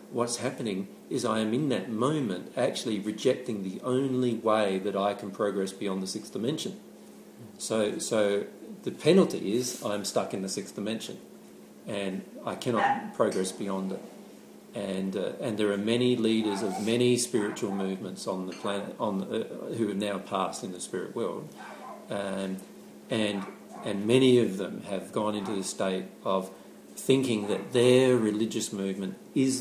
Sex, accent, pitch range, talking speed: male, Australian, 95-115 Hz, 165 wpm